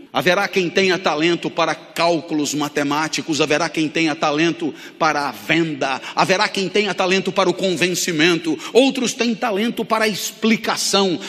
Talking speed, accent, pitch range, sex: 140 wpm, Brazilian, 180-245 Hz, male